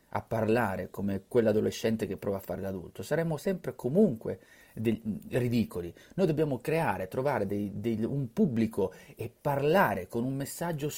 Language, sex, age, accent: Italian, male, 30-49, native